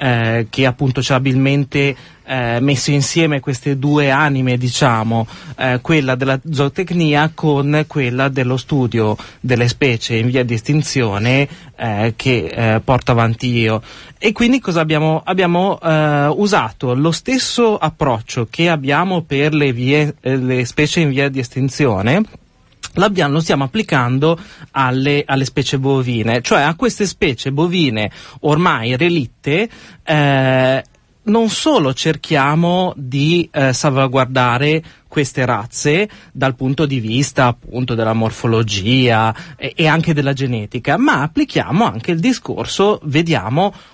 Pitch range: 130-160 Hz